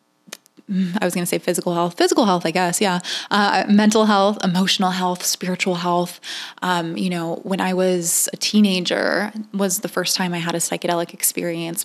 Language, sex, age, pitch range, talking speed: English, female, 20-39, 175-195 Hz, 180 wpm